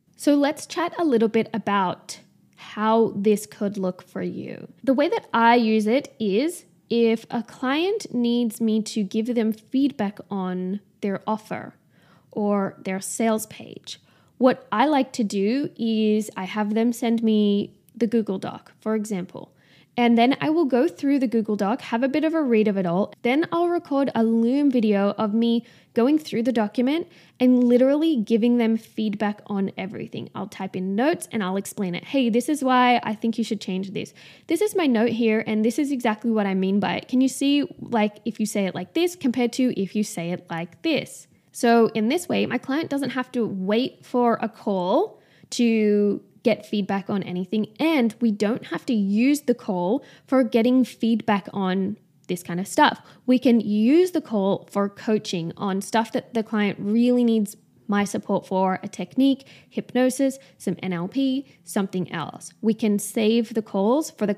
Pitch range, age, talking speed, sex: 205-250 Hz, 10-29, 190 wpm, female